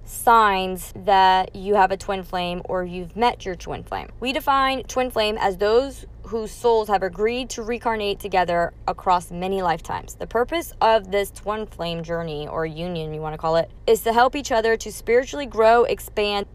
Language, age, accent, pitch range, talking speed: English, 20-39, American, 175-220 Hz, 190 wpm